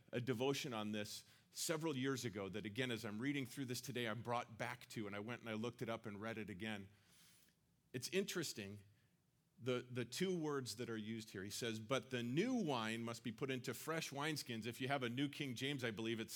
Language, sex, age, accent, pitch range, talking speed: English, male, 40-59, American, 125-170 Hz, 230 wpm